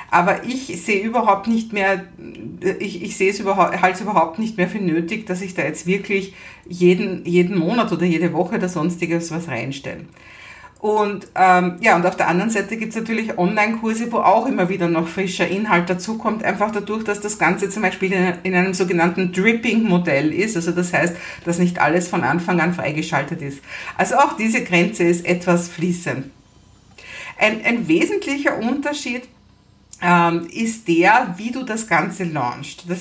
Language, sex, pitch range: German, female, 175-220 Hz